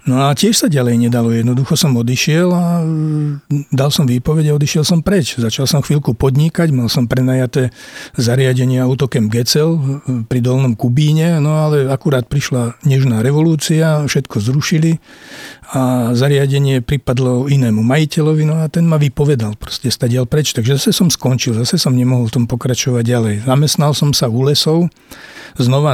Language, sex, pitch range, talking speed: Slovak, male, 125-150 Hz, 155 wpm